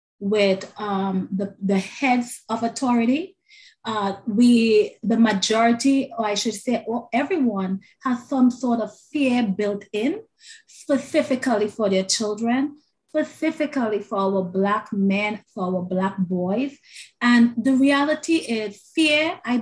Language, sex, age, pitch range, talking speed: English, female, 30-49, 195-245 Hz, 130 wpm